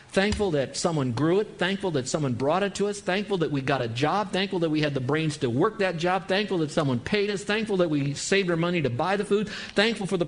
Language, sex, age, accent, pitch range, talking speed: English, male, 50-69, American, 135-195 Hz, 270 wpm